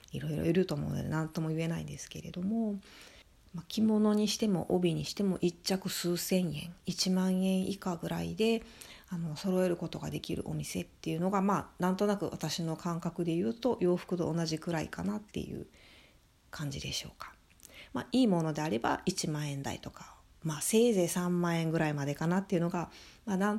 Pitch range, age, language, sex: 155-200 Hz, 40-59, Japanese, female